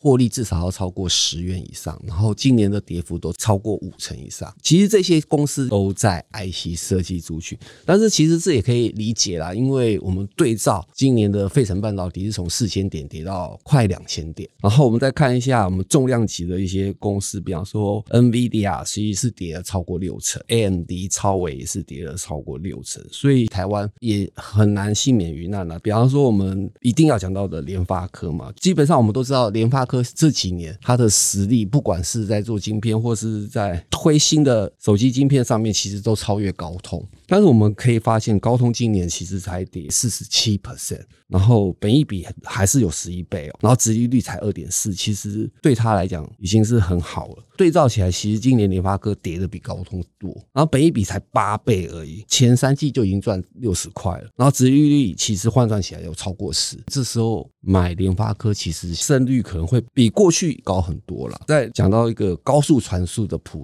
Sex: male